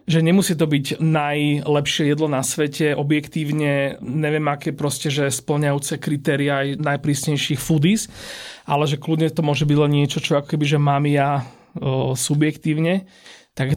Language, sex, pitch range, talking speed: Slovak, male, 135-165 Hz, 150 wpm